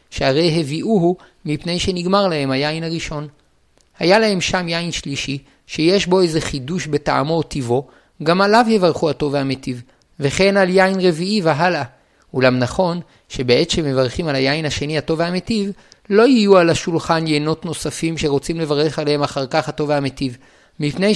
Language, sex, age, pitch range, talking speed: Hebrew, male, 50-69, 150-190 Hz, 145 wpm